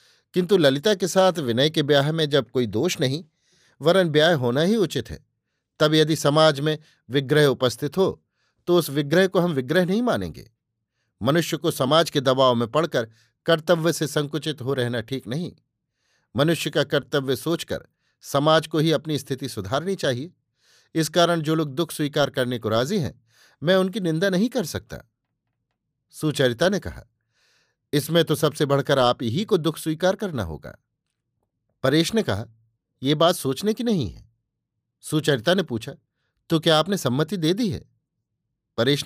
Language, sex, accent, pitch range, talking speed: Hindi, male, native, 130-170 Hz, 135 wpm